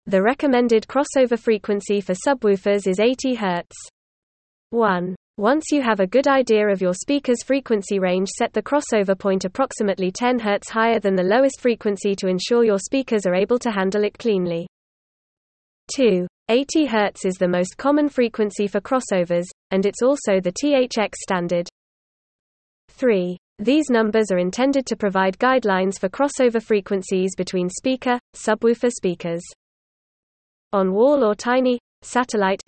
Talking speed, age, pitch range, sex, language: 145 wpm, 20-39, 185-245 Hz, female, English